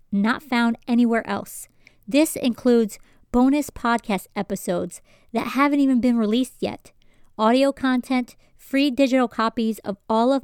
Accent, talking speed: American, 130 wpm